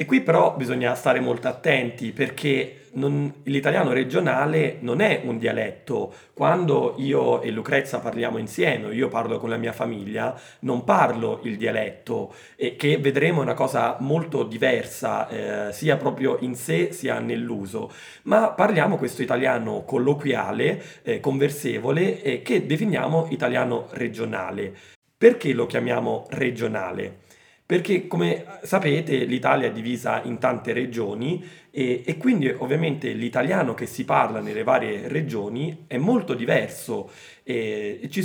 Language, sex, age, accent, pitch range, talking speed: Italian, male, 30-49, native, 120-150 Hz, 135 wpm